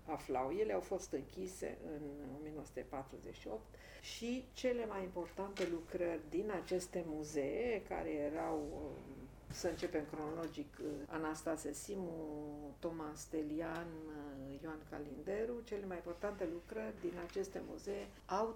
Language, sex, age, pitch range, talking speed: Romanian, female, 50-69, 155-200 Hz, 110 wpm